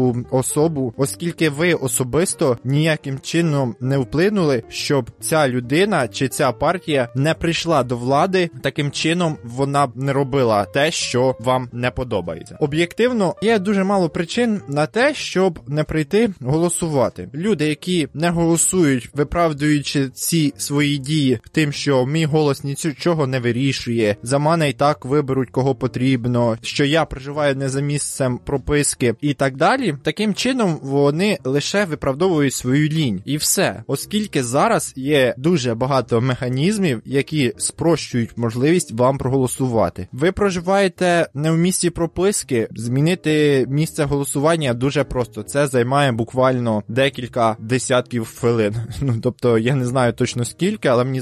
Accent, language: native, Ukrainian